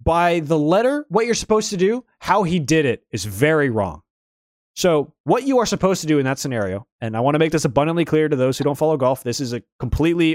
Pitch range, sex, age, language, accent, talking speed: 130-190 Hz, male, 20-39, English, American, 250 wpm